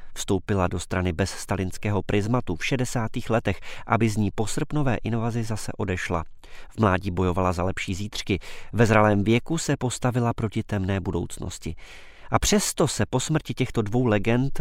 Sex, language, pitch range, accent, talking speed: male, Czech, 95-120 Hz, native, 155 wpm